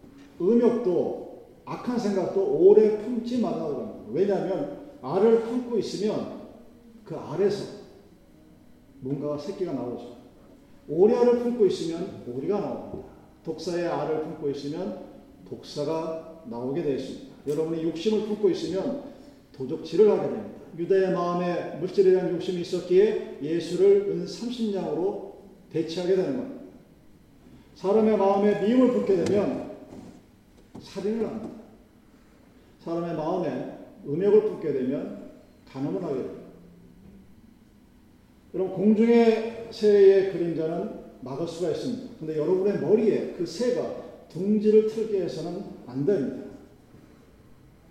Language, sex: Korean, male